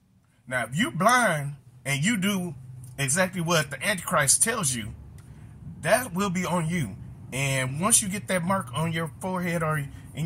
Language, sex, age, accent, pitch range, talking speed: English, male, 30-49, American, 120-165 Hz, 170 wpm